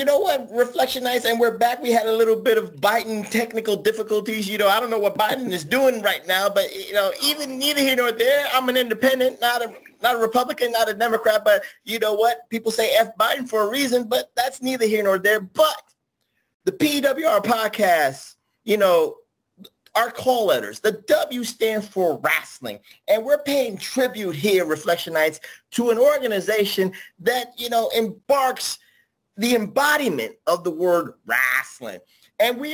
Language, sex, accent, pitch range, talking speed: English, male, American, 195-260 Hz, 185 wpm